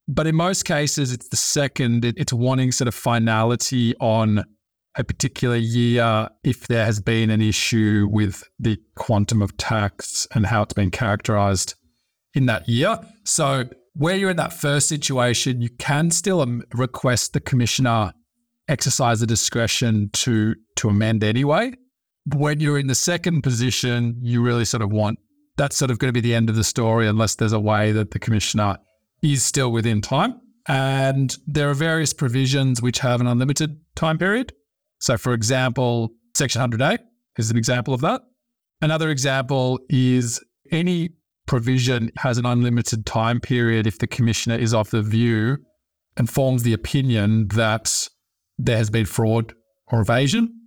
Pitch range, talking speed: 115-145 Hz, 160 wpm